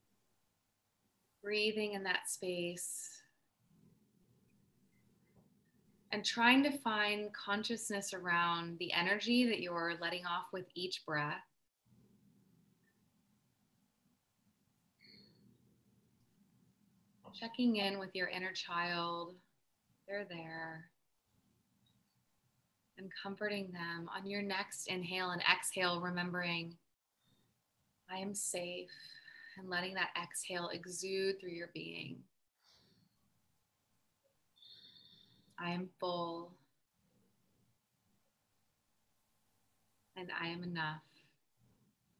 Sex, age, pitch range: female, 20-39, 170-200 Hz